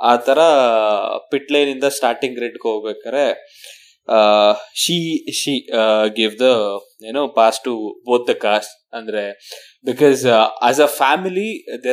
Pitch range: 120-180 Hz